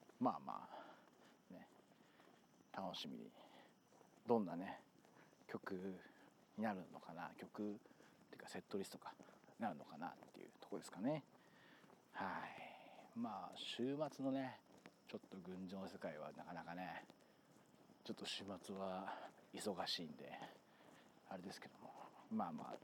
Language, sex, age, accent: Japanese, male, 40-59, native